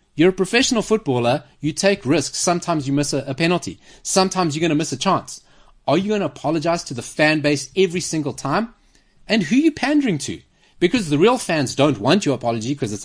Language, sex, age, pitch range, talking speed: English, male, 30-49, 140-190 Hz, 215 wpm